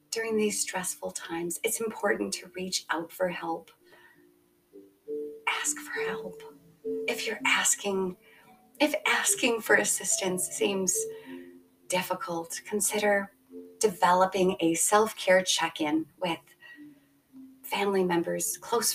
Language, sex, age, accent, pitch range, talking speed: English, female, 30-49, American, 170-225 Hz, 100 wpm